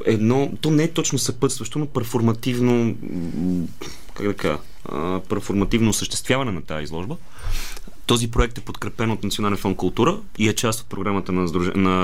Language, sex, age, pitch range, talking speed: Bulgarian, male, 30-49, 100-130 Hz, 155 wpm